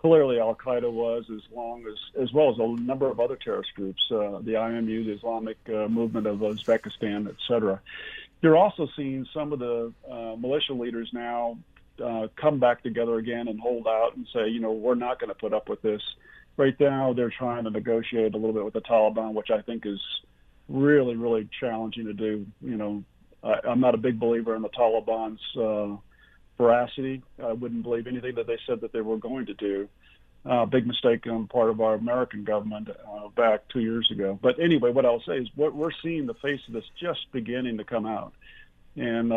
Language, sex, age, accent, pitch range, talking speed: English, male, 40-59, American, 110-125 Hz, 205 wpm